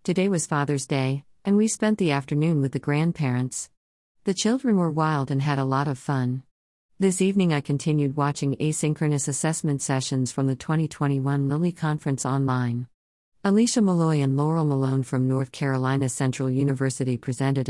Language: English